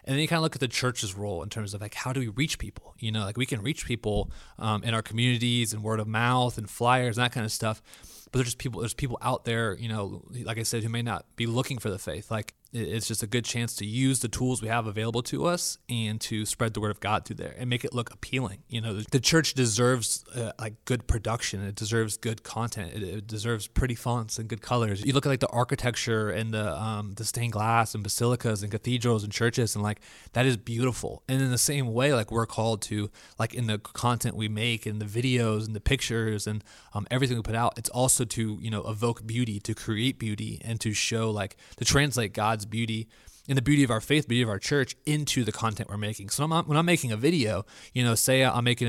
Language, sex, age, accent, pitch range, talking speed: English, male, 20-39, American, 105-125 Hz, 255 wpm